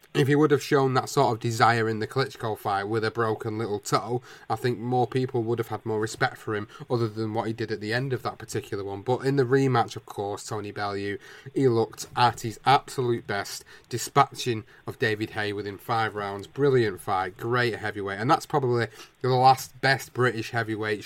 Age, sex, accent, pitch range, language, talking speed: 30-49, male, British, 110-135 Hz, English, 210 wpm